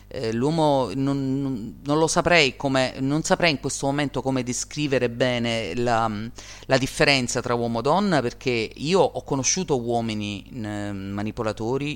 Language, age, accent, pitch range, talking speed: Italian, 30-49, native, 105-140 Hz, 135 wpm